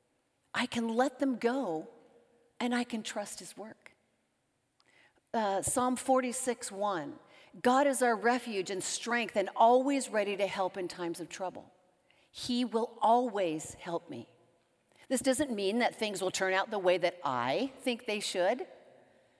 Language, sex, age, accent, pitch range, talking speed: English, female, 50-69, American, 205-275 Hz, 150 wpm